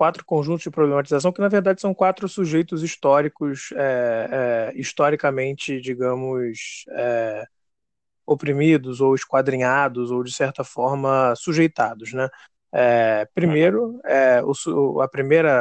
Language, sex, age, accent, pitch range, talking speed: Portuguese, male, 20-39, Brazilian, 125-150 Hz, 90 wpm